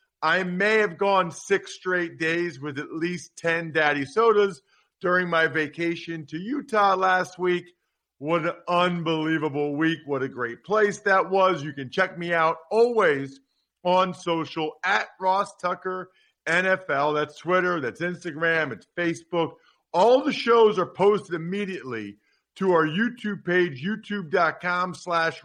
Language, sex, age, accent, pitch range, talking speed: English, male, 40-59, American, 150-185 Hz, 140 wpm